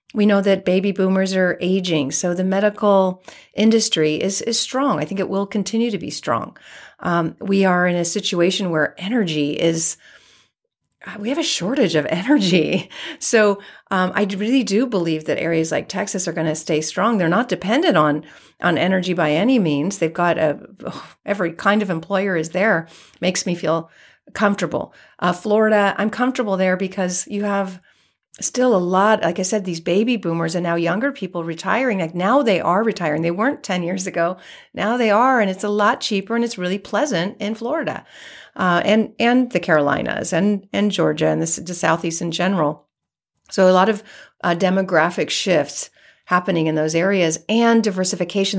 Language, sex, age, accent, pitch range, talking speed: English, female, 40-59, American, 170-225 Hz, 185 wpm